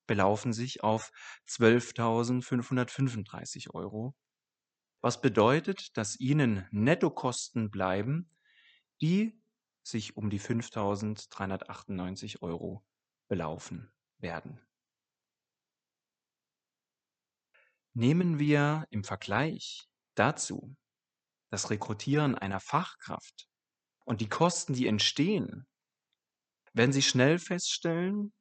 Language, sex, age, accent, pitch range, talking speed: German, male, 30-49, German, 105-145 Hz, 80 wpm